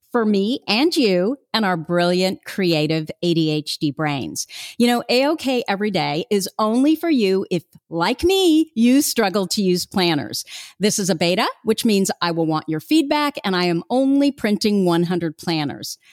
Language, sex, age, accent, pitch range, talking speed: English, female, 50-69, American, 175-235 Hz, 165 wpm